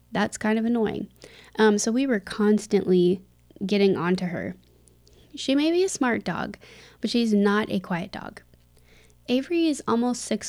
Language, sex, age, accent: English, female, 20-39, American